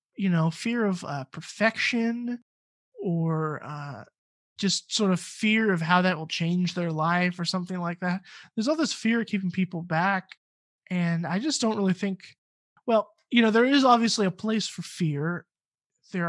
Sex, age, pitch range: male, 20-39, 170-220 Hz